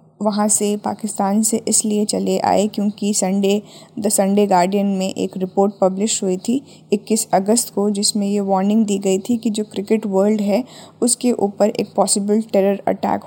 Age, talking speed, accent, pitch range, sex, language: 20-39, 170 wpm, native, 190-215 Hz, female, Hindi